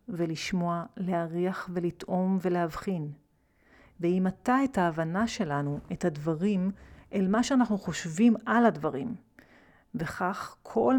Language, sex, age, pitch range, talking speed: Hebrew, female, 40-59, 170-225 Hz, 105 wpm